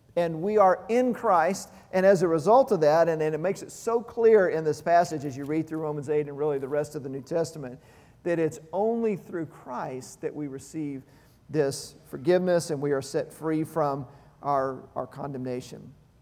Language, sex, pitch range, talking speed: English, male, 150-205 Hz, 200 wpm